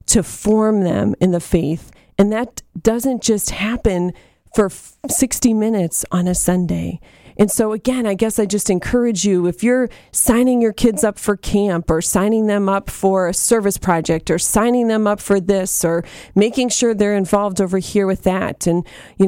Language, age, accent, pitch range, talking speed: English, 40-59, American, 185-225 Hz, 185 wpm